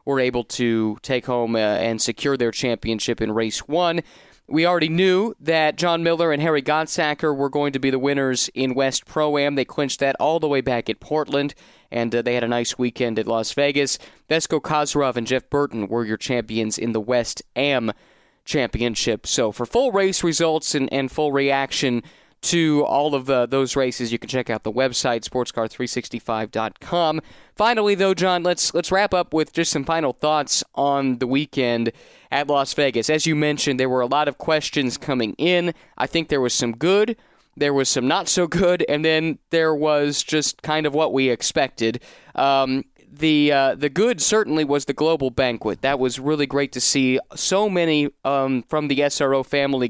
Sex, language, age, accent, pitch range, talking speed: male, English, 30-49, American, 125-155 Hz, 190 wpm